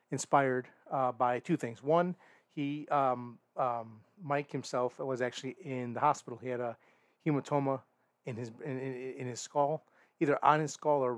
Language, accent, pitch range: English, American, 120-140 Hz